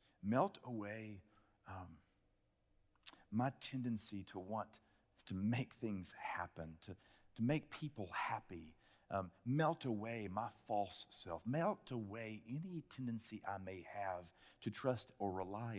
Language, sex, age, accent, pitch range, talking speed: English, male, 40-59, American, 100-120 Hz, 125 wpm